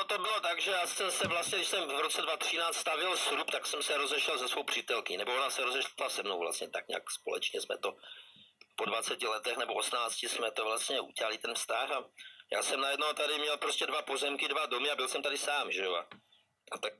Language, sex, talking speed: Slovak, male, 225 wpm